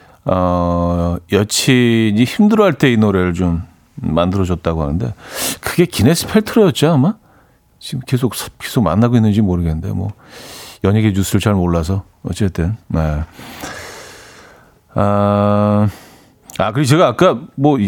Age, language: 40-59, Korean